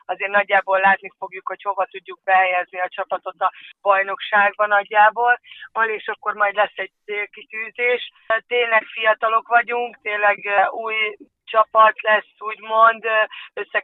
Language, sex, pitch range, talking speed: Hungarian, female, 190-215 Hz, 125 wpm